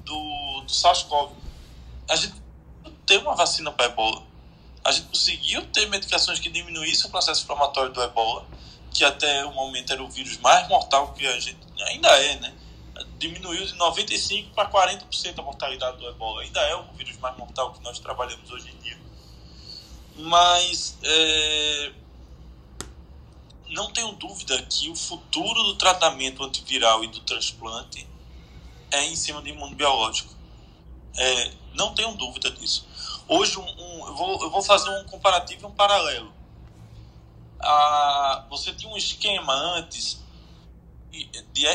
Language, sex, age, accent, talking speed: Portuguese, male, 20-39, Brazilian, 150 wpm